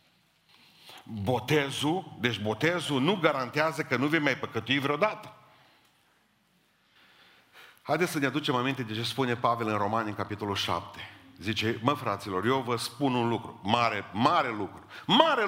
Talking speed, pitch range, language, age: 145 wpm, 115-150 Hz, Romanian, 50-69